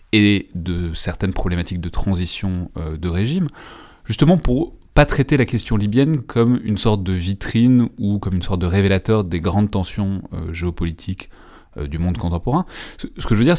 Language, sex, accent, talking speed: French, male, French, 170 wpm